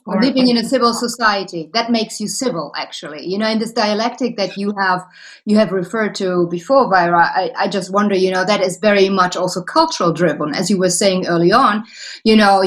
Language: English